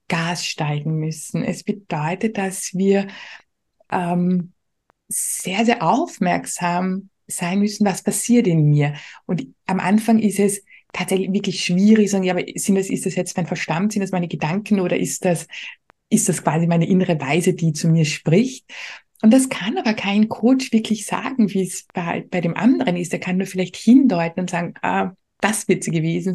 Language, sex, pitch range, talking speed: German, female, 175-220 Hz, 180 wpm